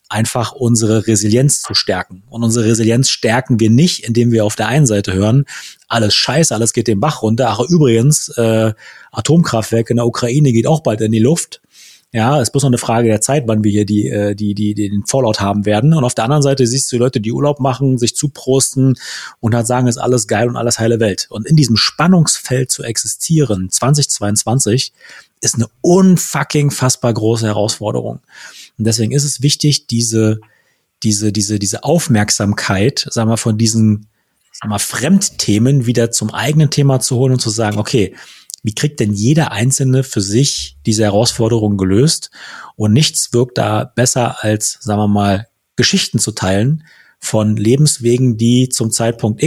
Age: 30-49